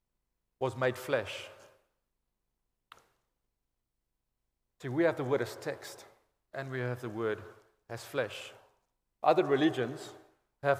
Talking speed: 110 wpm